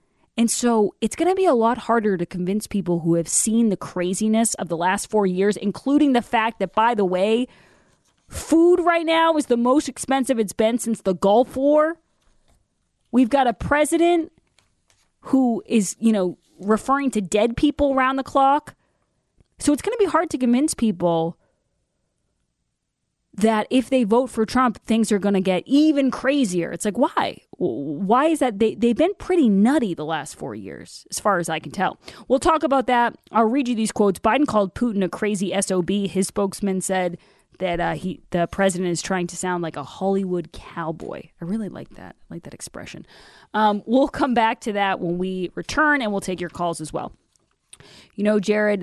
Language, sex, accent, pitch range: English, female, American, 185-245 Hz